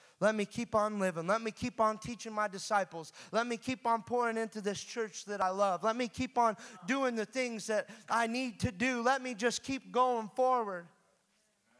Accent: American